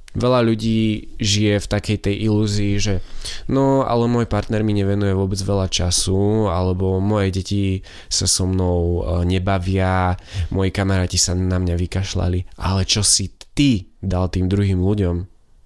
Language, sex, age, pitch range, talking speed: Slovak, male, 20-39, 90-105 Hz, 145 wpm